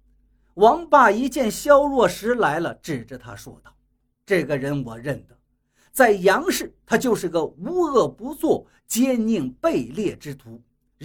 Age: 50-69